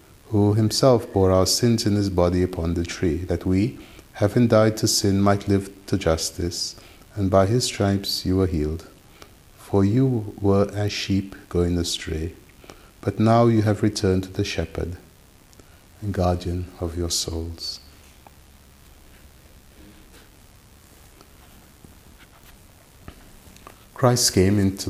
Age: 50-69